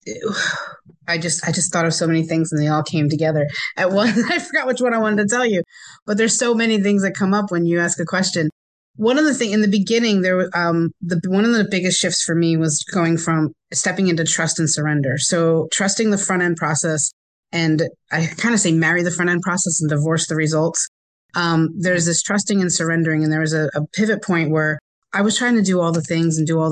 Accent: American